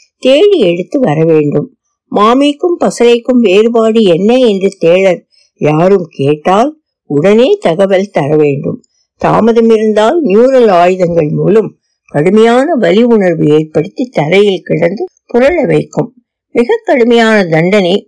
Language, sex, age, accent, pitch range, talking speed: Tamil, female, 60-79, native, 175-250 Hz, 85 wpm